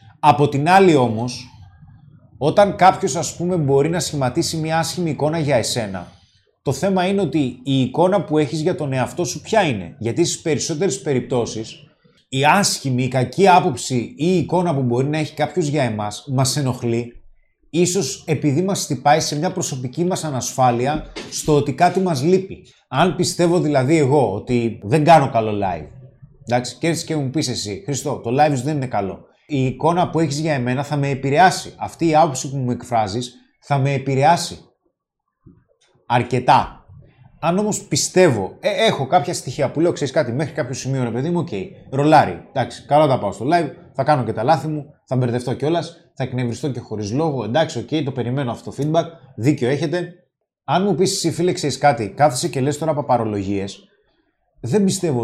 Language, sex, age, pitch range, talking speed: Greek, male, 30-49, 125-165 Hz, 180 wpm